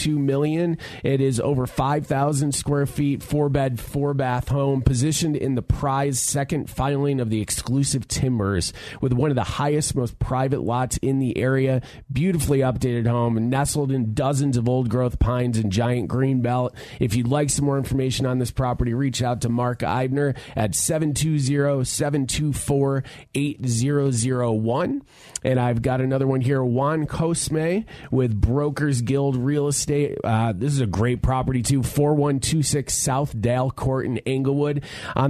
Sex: male